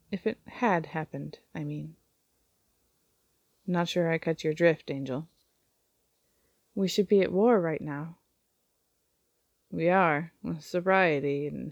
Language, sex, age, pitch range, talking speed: English, female, 30-49, 155-190 Hz, 130 wpm